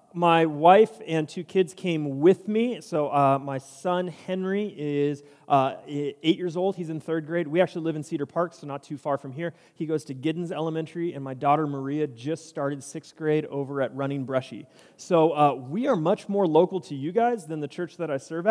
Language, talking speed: English, 215 wpm